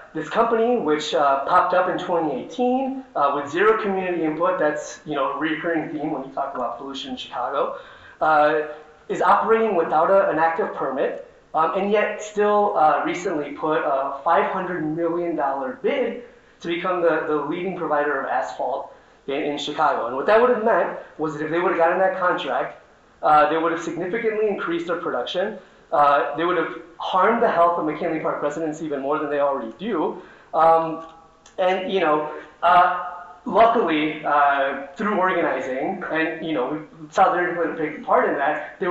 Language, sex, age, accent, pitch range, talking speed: English, male, 30-49, American, 150-195 Hz, 175 wpm